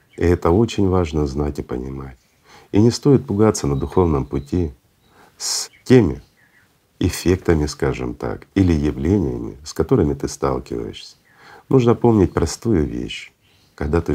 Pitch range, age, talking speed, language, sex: 75-100 Hz, 50-69, 130 wpm, Russian, male